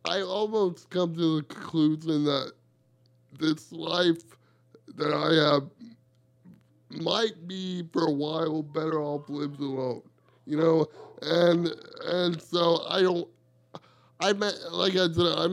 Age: 20-39